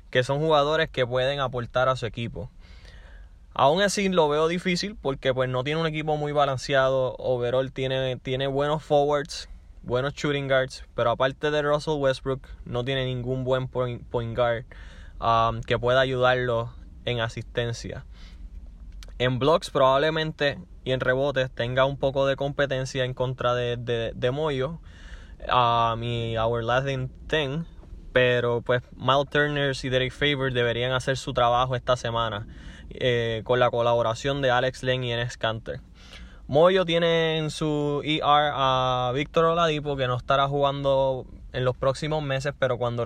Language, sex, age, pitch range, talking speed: Spanish, male, 10-29, 120-140 Hz, 155 wpm